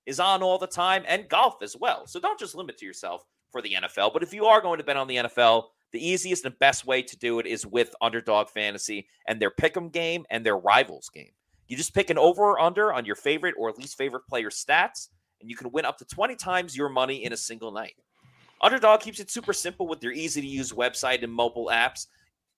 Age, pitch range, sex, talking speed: 30-49, 120-185 Hz, male, 235 wpm